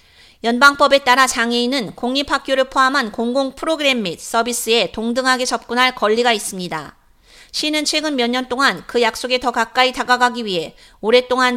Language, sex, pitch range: Korean, female, 230-275 Hz